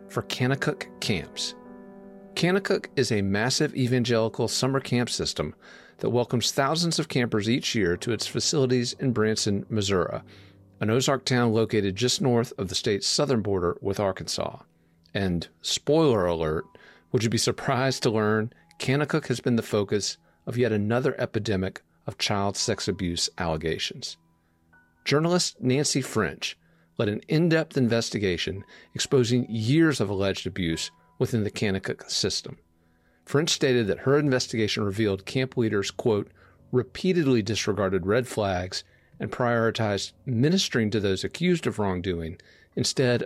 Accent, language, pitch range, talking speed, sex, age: American, English, 95-130 Hz, 135 wpm, male, 40-59